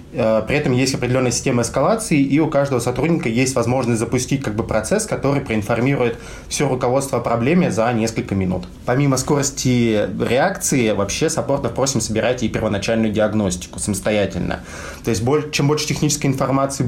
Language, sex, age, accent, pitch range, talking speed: Russian, male, 20-39, native, 105-130 Hz, 150 wpm